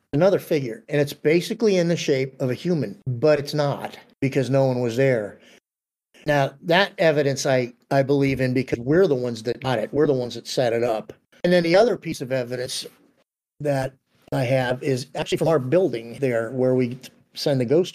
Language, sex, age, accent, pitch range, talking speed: English, male, 50-69, American, 125-150 Hz, 205 wpm